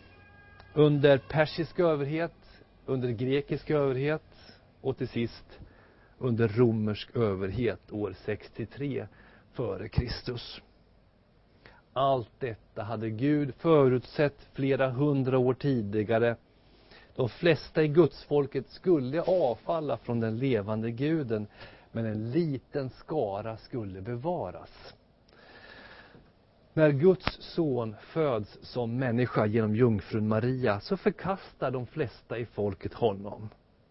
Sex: male